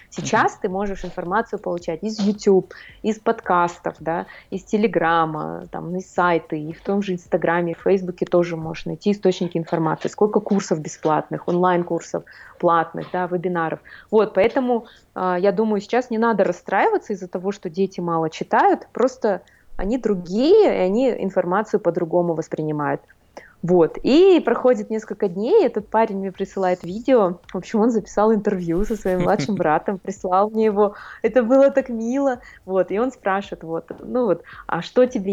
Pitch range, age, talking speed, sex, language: 175-220 Hz, 20-39, 150 wpm, female, Russian